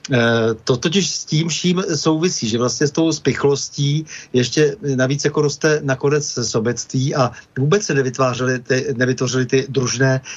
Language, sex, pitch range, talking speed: Slovak, male, 120-140 Hz, 140 wpm